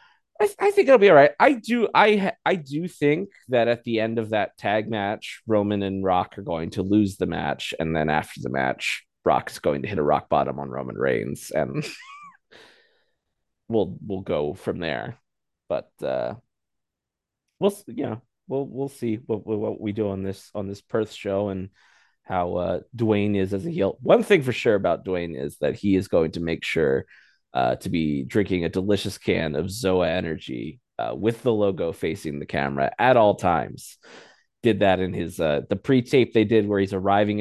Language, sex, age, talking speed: English, male, 30-49, 200 wpm